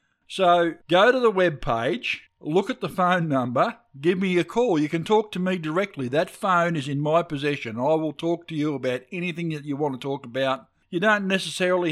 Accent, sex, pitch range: Australian, male, 140-175 Hz